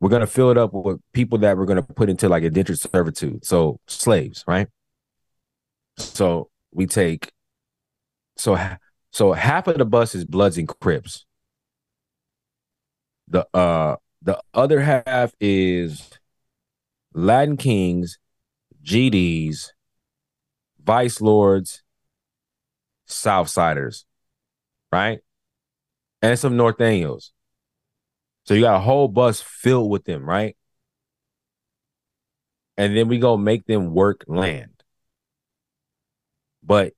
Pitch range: 90-125 Hz